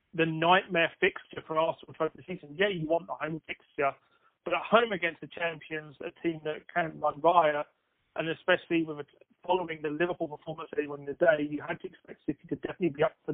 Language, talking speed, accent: English, 215 wpm, British